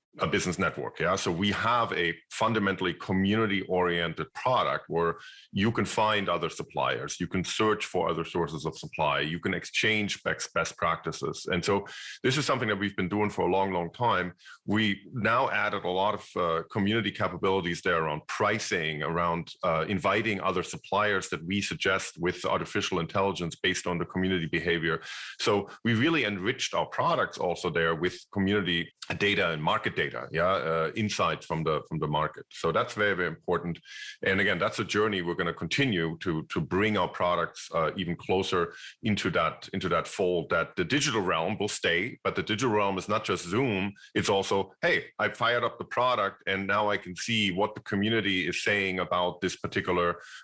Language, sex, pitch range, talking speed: English, male, 85-100 Hz, 185 wpm